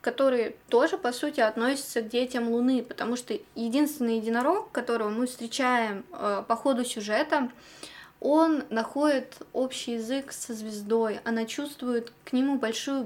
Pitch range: 225-270 Hz